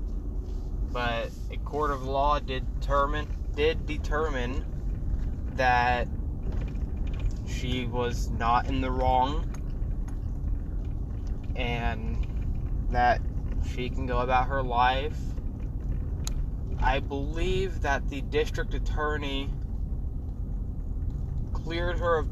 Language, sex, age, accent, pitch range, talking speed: English, male, 20-39, American, 90-130 Hz, 85 wpm